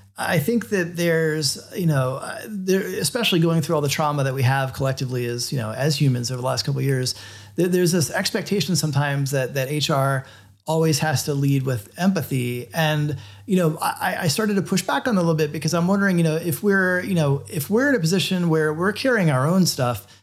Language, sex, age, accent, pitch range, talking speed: English, male, 30-49, American, 140-175 Hz, 230 wpm